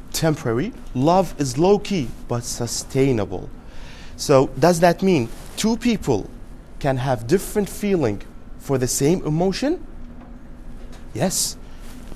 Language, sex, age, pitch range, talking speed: English, male, 30-49, 115-165 Hz, 105 wpm